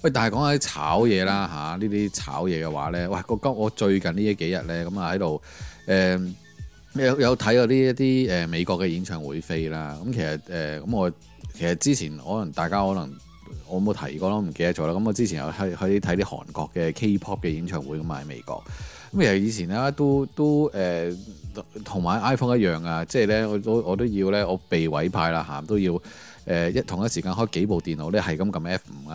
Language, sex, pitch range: Chinese, male, 85-110 Hz